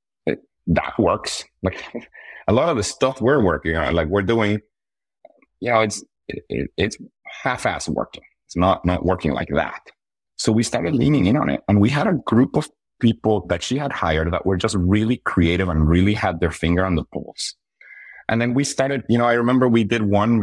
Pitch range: 85-110 Hz